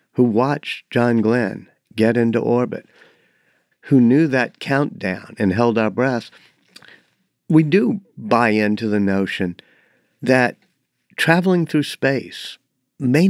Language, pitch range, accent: English, 115-155 Hz, American